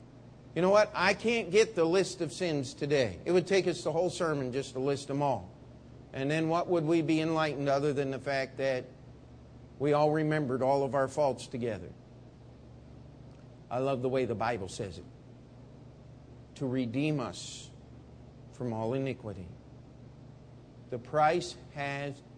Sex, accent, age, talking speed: male, American, 50-69, 160 wpm